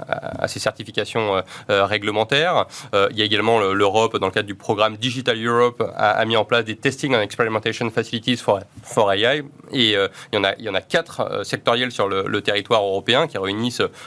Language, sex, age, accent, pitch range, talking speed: French, male, 30-49, French, 110-135 Hz, 220 wpm